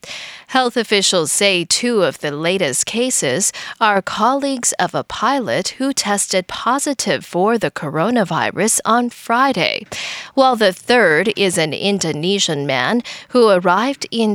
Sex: female